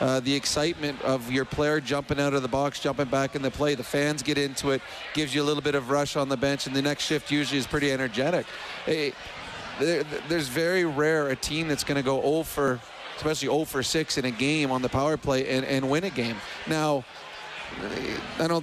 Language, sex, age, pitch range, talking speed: English, male, 30-49, 135-155 Hz, 225 wpm